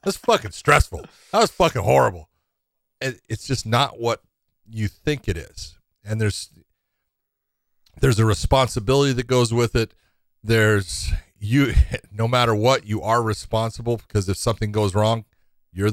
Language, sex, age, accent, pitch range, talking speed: English, male, 40-59, American, 100-125 Hz, 145 wpm